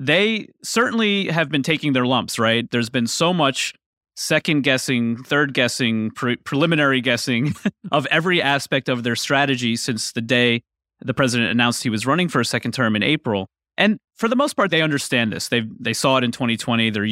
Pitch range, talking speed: 115-150 Hz, 195 wpm